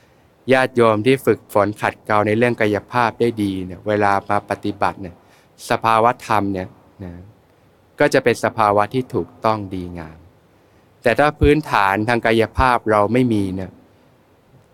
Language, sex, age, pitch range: Thai, male, 20-39, 105-130 Hz